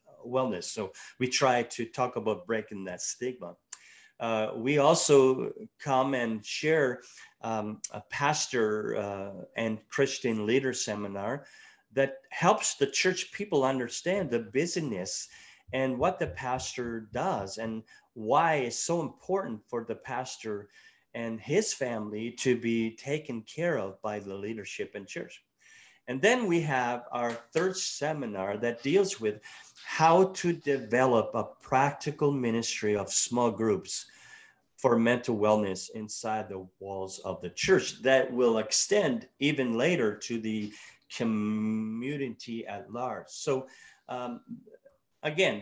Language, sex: English, male